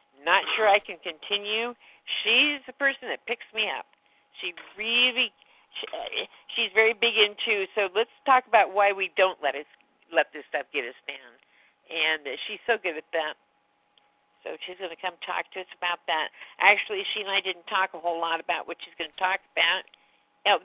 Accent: American